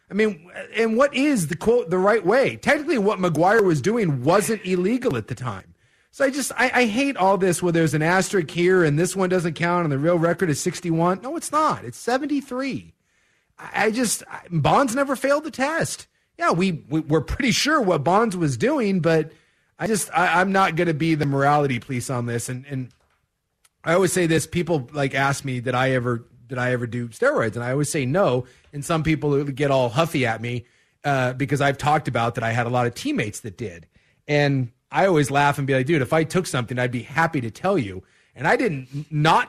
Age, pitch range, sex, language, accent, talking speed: 30-49, 135-185 Hz, male, English, American, 230 wpm